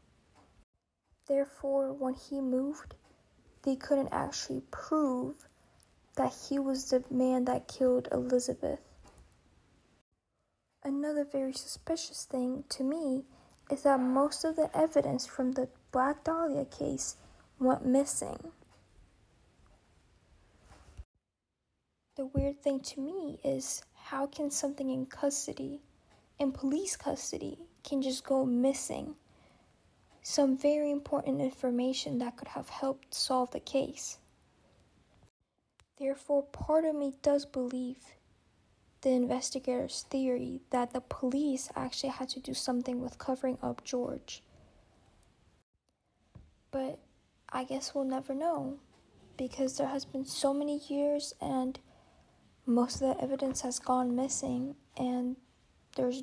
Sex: female